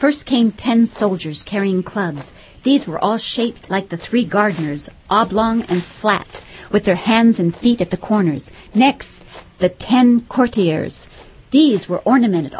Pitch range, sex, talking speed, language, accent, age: 185-245 Hz, female, 150 wpm, English, American, 50-69